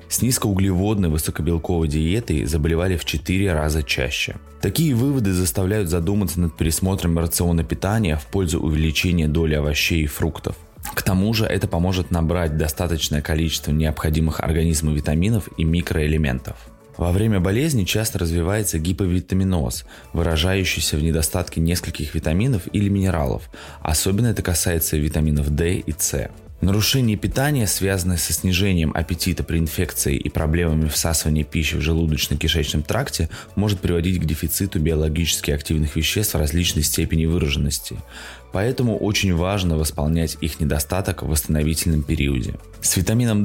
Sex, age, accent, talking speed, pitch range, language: male, 20-39, native, 130 wpm, 80-95 Hz, Russian